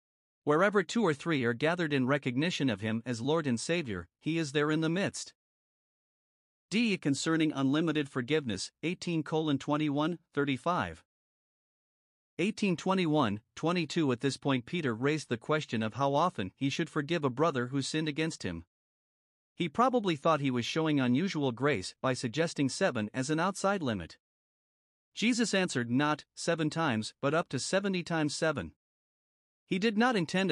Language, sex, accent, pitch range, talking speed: English, male, American, 135-175 Hz, 155 wpm